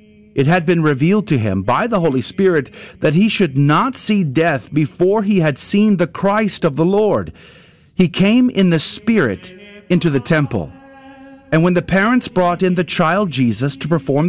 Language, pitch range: English, 125-185 Hz